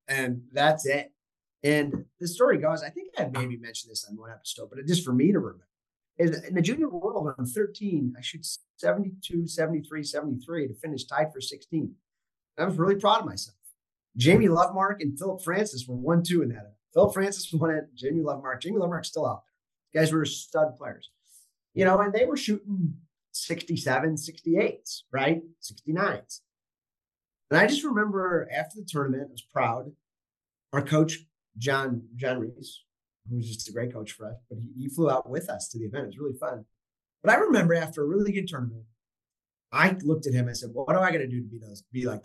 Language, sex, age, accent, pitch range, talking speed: English, male, 30-49, American, 125-180 Hz, 205 wpm